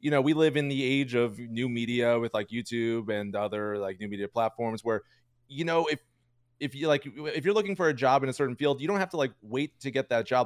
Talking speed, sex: 265 wpm, male